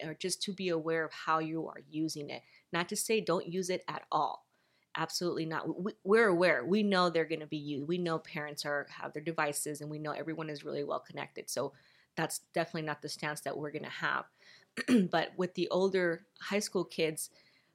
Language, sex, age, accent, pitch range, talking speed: English, female, 20-39, American, 150-180 Hz, 215 wpm